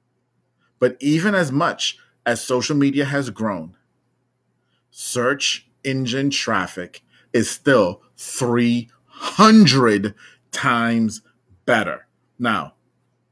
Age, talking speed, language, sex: 30-49, 80 wpm, English, male